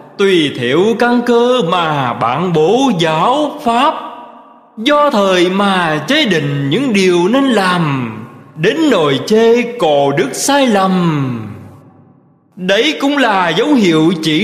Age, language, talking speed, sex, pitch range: 20-39, Vietnamese, 130 wpm, male, 160-240 Hz